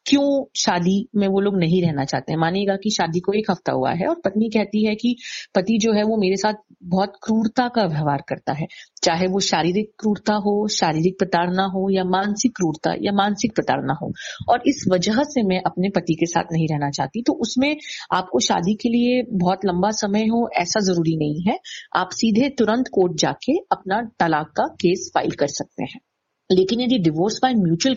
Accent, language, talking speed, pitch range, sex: native, Hindi, 200 wpm, 185-240 Hz, female